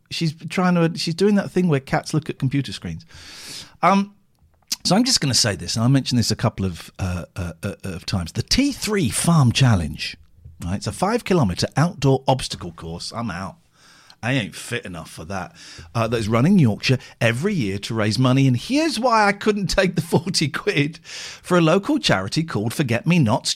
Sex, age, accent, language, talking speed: male, 50-69, British, English, 205 wpm